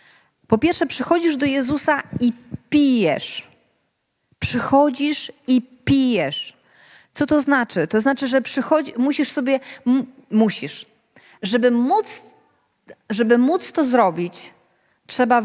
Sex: female